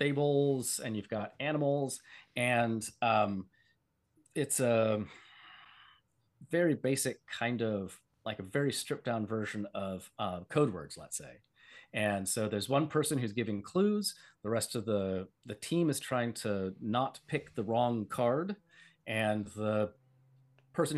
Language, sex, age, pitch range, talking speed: English, male, 30-49, 105-145 Hz, 145 wpm